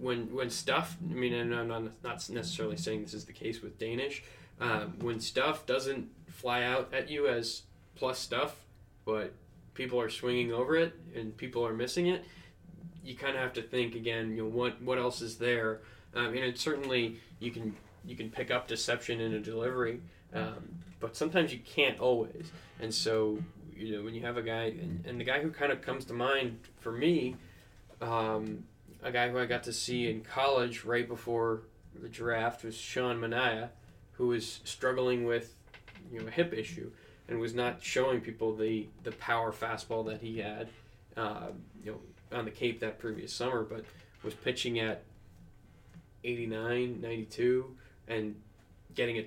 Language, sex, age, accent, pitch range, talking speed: English, male, 20-39, American, 110-125 Hz, 185 wpm